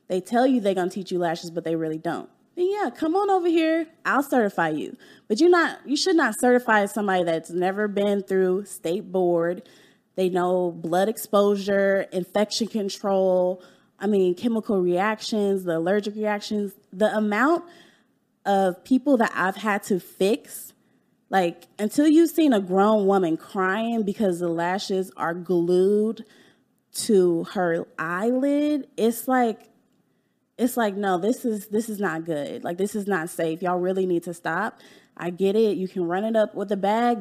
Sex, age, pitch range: female, 20-39, 185-230 Hz